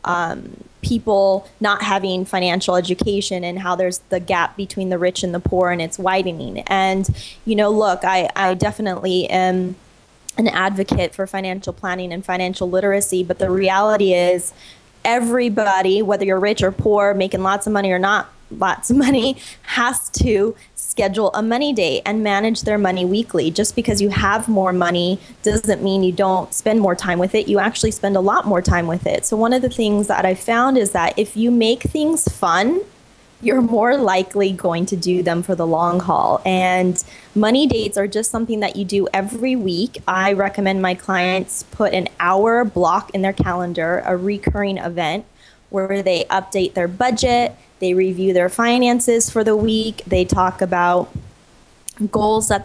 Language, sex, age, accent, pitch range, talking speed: English, female, 20-39, American, 185-220 Hz, 180 wpm